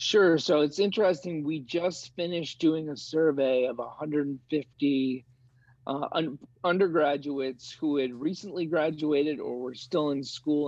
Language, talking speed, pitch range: English, 135 wpm, 130-160 Hz